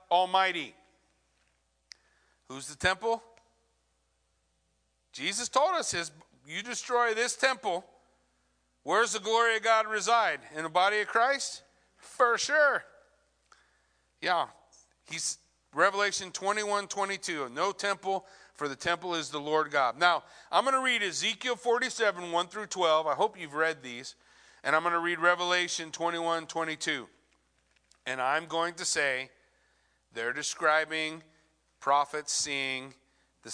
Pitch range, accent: 135-200 Hz, American